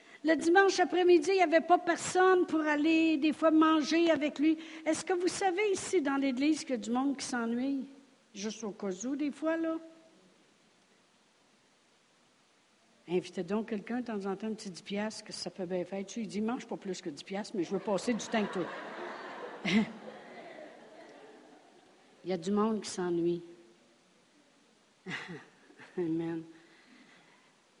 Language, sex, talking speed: French, female, 160 wpm